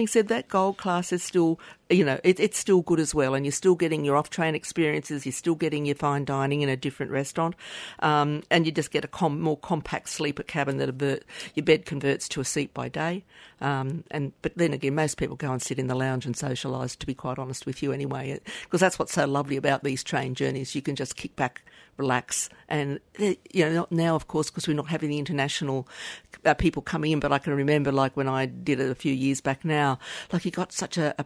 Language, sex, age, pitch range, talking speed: English, female, 50-69, 135-165 Hz, 240 wpm